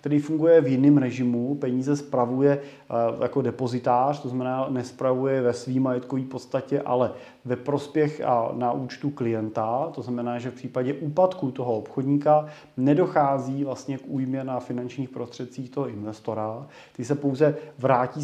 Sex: male